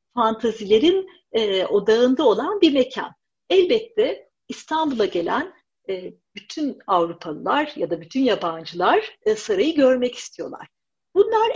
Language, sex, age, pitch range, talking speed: Turkish, female, 50-69, 215-330 Hz, 110 wpm